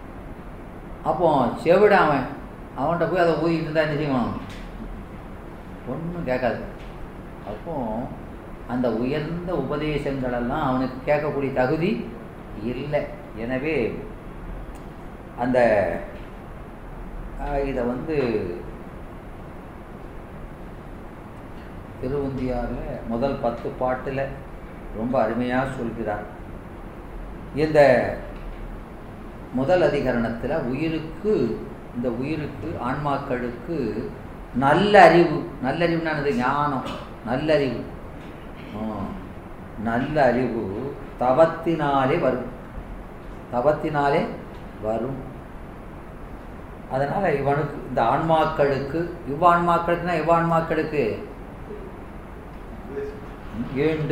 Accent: native